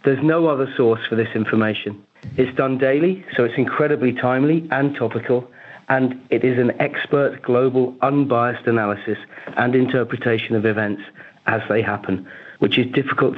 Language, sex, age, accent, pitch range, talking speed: English, male, 40-59, British, 110-135 Hz, 155 wpm